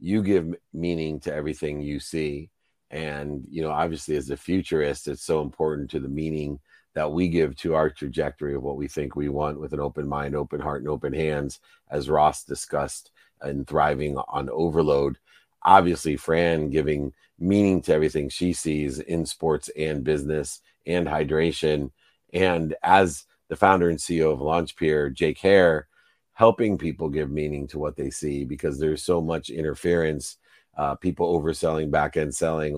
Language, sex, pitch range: English, male, 70-80 Hz